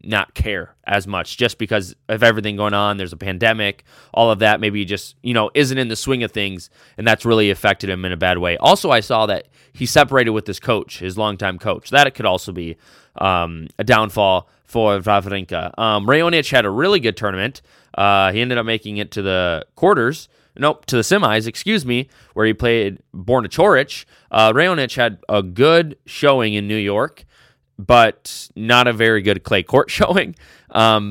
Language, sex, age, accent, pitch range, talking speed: English, male, 20-39, American, 105-135 Hz, 200 wpm